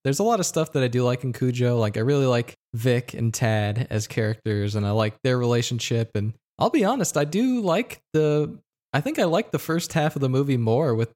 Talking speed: 240 wpm